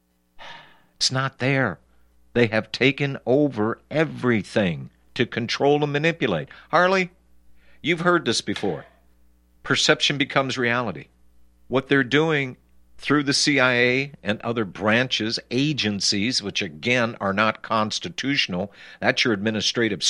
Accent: American